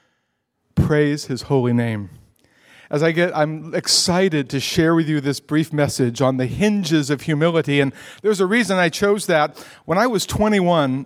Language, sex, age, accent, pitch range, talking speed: English, male, 50-69, American, 130-175 Hz, 175 wpm